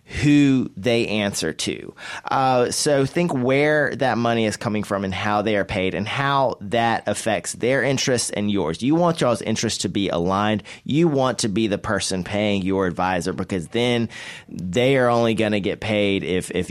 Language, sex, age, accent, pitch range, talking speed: English, male, 30-49, American, 100-140 Hz, 190 wpm